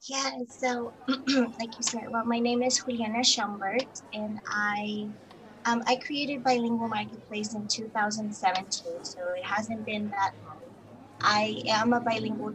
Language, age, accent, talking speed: English, 20-39, American, 145 wpm